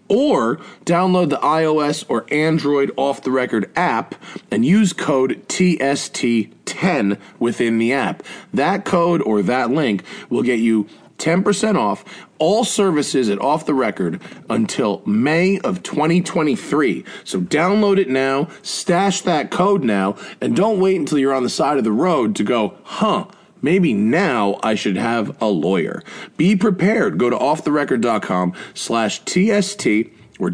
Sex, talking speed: male, 145 wpm